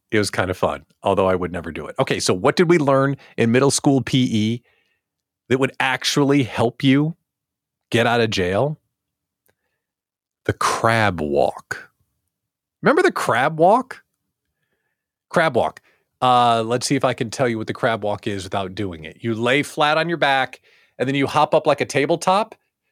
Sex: male